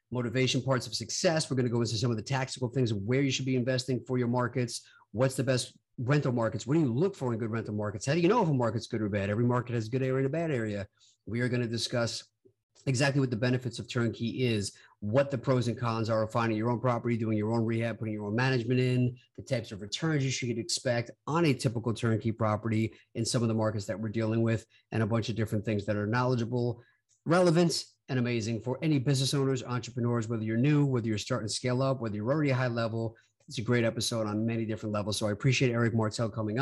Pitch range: 115-135 Hz